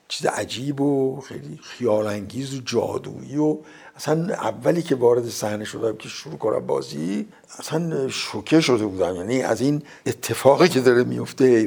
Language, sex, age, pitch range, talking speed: Persian, male, 60-79, 120-170 Hz, 155 wpm